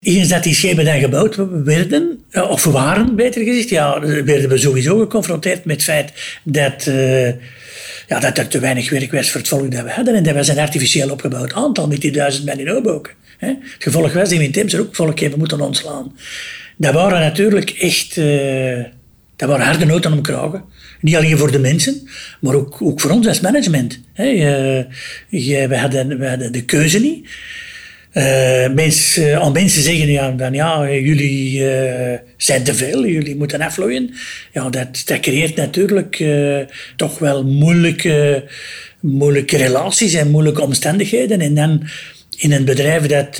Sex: male